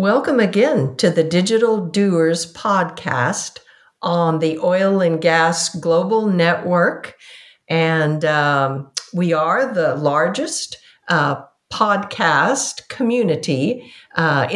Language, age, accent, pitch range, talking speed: English, 50-69, American, 160-210 Hz, 95 wpm